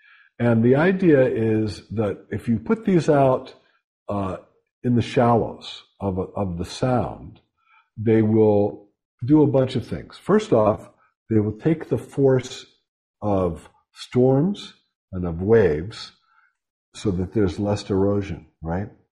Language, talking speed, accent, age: English, 135 wpm, American, 60-79